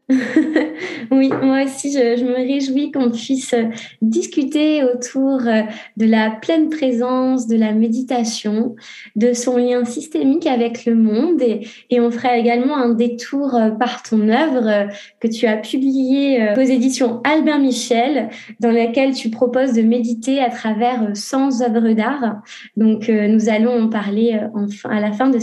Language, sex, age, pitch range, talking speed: French, female, 20-39, 230-270 Hz, 150 wpm